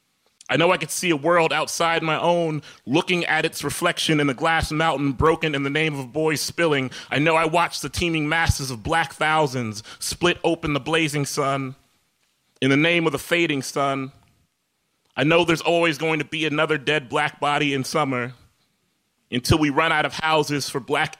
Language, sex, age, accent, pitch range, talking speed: English, male, 30-49, American, 140-165 Hz, 195 wpm